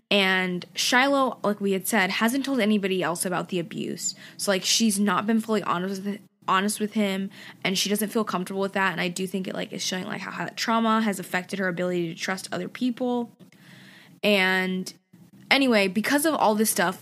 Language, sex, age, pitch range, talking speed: English, female, 20-39, 180-220 Hz, 205 wpm